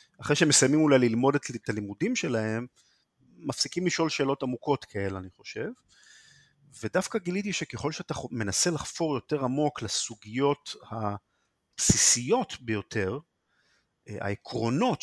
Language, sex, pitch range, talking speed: Hebrew, male, 110-145 Hz, 105 wpm